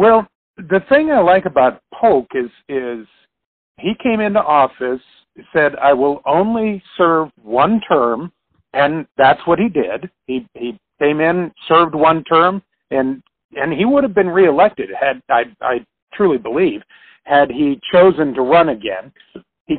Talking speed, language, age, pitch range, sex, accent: 155 wpm, English, 50-69, 135-175 Hz, male, American